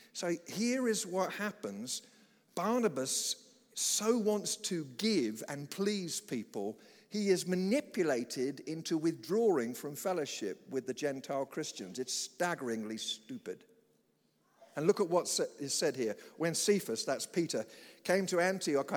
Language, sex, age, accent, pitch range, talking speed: English, male, 50-69, British, 140-205 Hz, 130 wpm